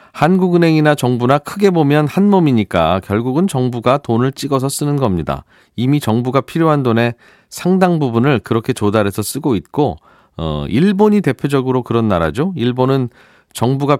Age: 40-59